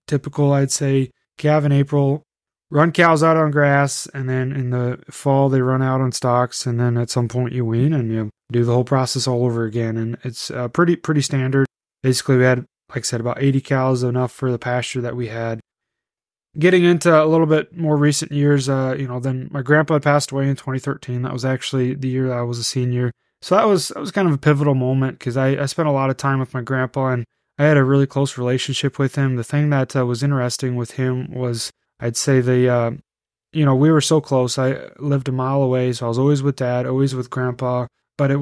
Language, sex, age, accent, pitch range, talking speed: English, male, 20-39, American, 125-145 Hz, 235 wpm